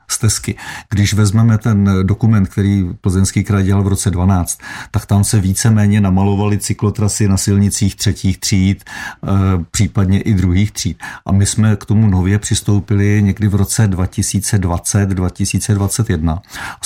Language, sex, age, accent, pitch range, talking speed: Czech, male, 50-69, native, 95-110 Hz, 140 wpm